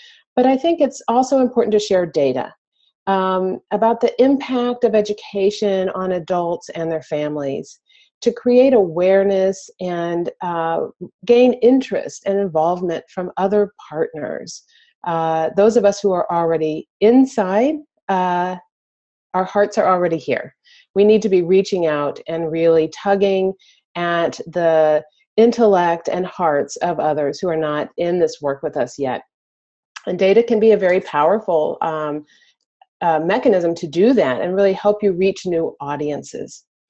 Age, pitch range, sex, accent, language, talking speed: 40-59, 160-210 Hz, female, American, English, 150 wpm